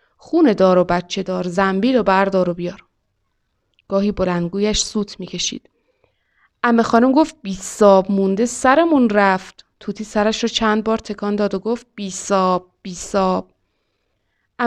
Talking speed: 145 wpm